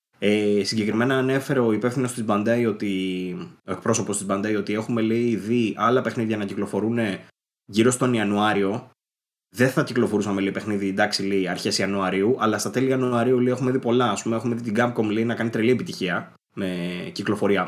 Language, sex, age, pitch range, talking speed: Greek, male, 20-39, 100-125 Hz, 155 wpm